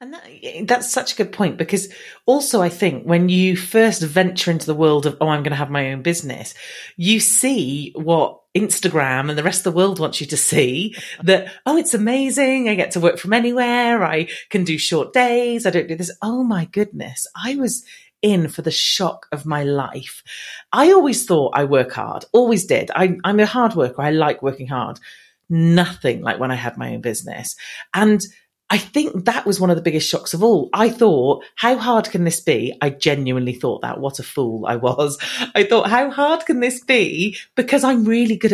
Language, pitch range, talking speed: English, 155-235 Hz, 210 wpm